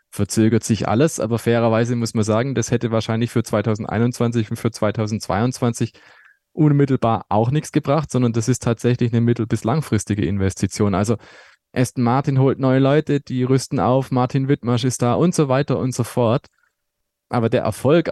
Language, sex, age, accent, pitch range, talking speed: German, male, 20-39, German, 110-125 Hz, 170 wpm